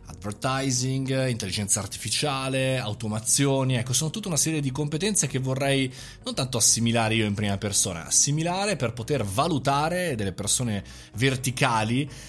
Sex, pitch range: male, 110-140 Hz